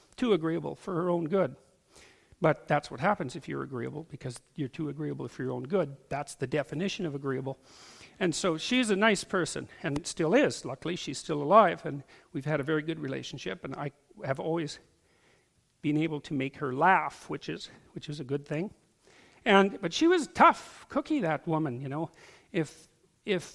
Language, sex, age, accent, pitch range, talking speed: English, male, 50-69, American, 145-190 Hz, 190 wpm